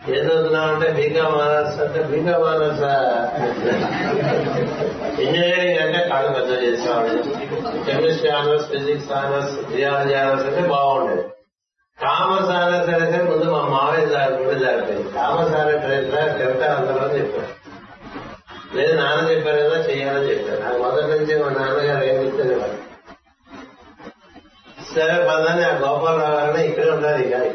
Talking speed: 110 wpm